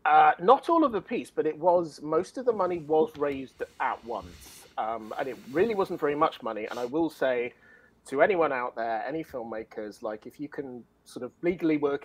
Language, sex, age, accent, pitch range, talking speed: English, male, 30-49, British, 120-155 Hz, 215 wpm